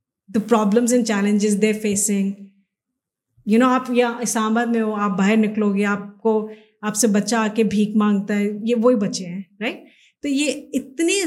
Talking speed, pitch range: 190 wpm, 210-250 Hz